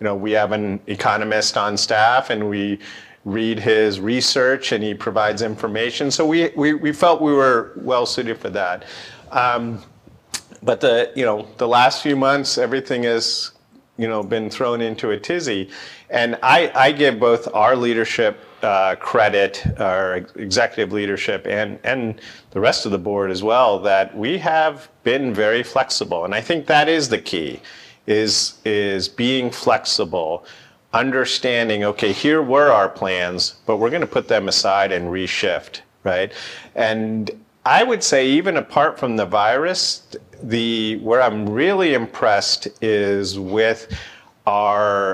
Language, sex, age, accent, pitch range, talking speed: English, male, 40-59, American, 100-125 Hz, 155 wpm